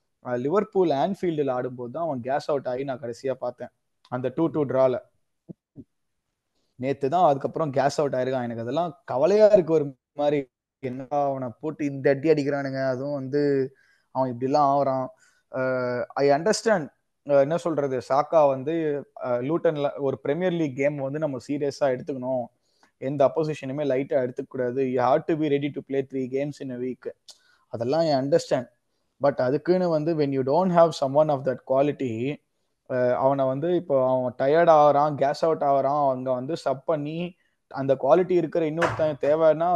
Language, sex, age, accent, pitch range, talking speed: Tamil, male, 20-39, native, 130-155 Hz, 150 wpm